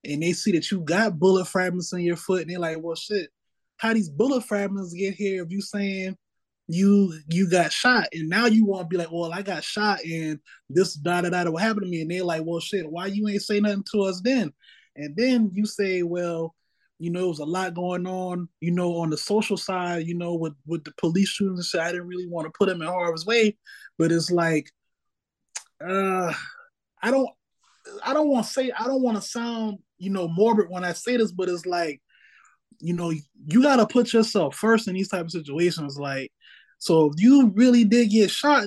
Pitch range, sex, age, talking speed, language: 175-220 Hz, male, 20-39, 230 wpm, English